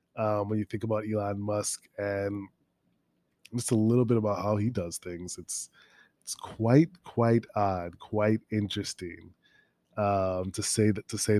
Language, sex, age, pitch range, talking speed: English, male, 20-39, 100-120 Hz, 160 wpm